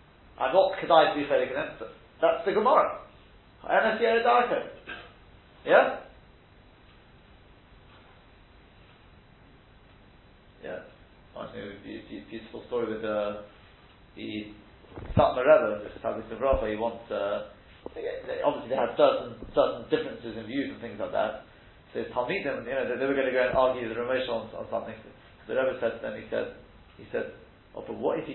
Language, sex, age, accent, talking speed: English, male, 40-59, British, 175 wpm